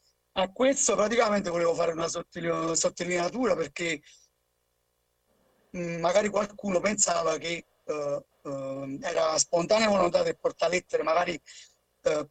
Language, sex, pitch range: Italian, male, 160-205 Hz